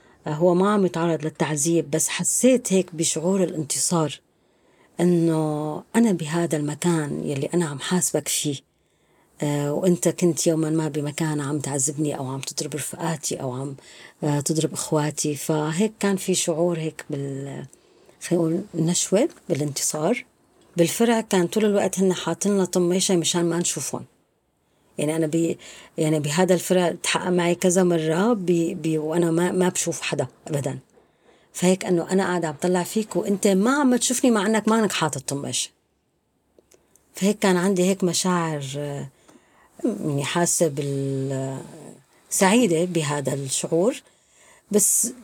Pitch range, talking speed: 155-195 Hz, 125 wpm